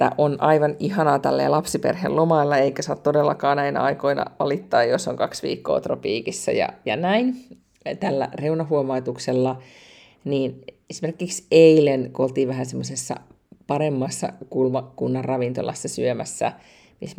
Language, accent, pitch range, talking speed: Finnish, native, 130-175 Hz, 120 wpm